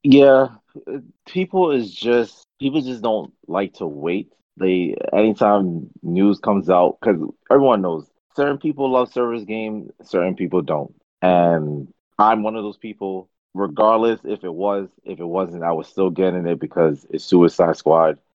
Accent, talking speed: American, 155 wpm